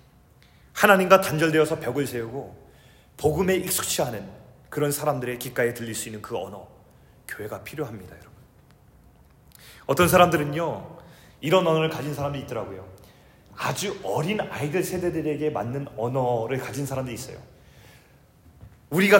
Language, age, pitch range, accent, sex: Korean, 30-49, 125-180 Hz, native, male